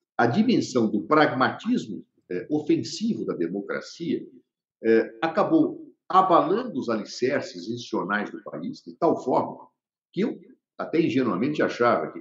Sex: male